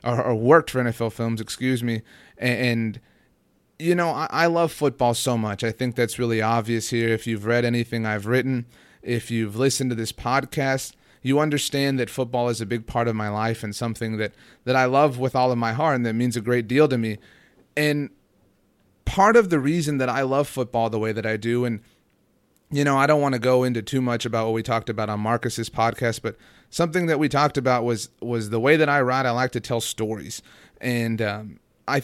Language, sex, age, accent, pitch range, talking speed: English, male, 30-49, American, 115-130 Hz, 220 wpm